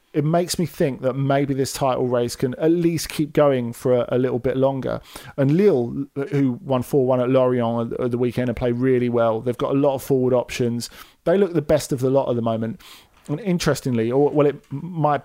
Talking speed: 225 wpm